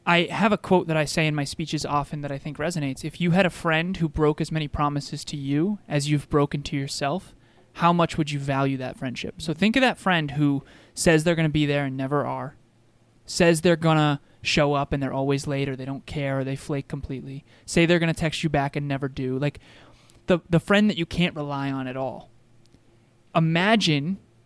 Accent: American